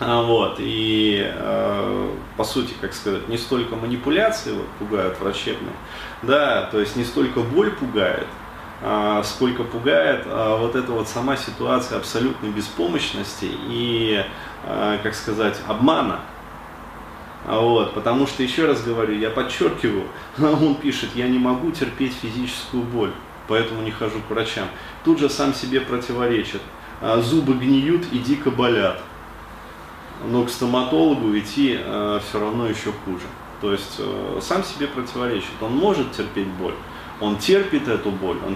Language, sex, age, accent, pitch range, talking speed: Russian, male, 30-49, native, 105-130 Hz, 140 wpm